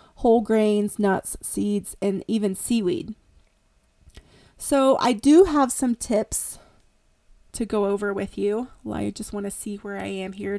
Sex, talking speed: female, 160 wpm